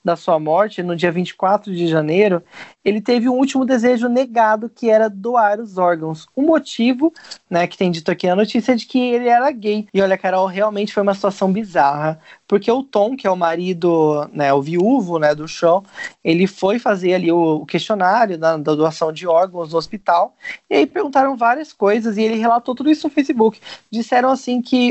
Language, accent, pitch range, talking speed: Portuguese, Brazilian, 185-250 Hz, 200 wpm